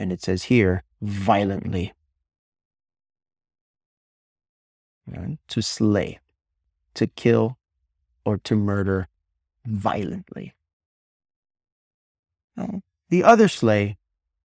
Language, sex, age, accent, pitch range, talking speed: English, male, 30-49, American, 75-120 Hz, 65 wpm